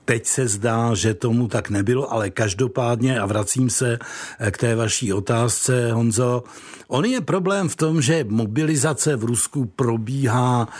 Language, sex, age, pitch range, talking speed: Czech, male, 60-79, 110-130 Hz, 150 wpm